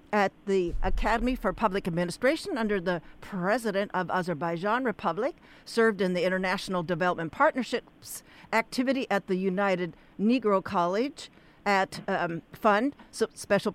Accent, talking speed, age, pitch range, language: American, 120 wpm, 60-79, 185-235 Hz, English